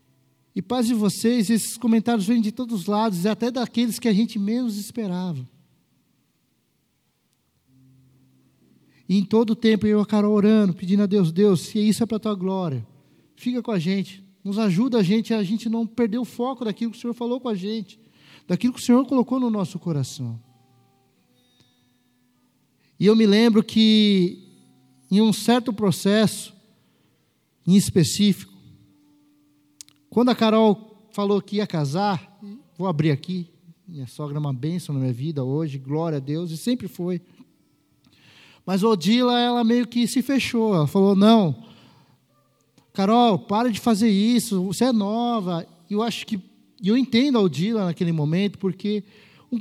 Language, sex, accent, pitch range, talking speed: Portuguese, male, Brazilian, 170-225 Hz, 165 wpm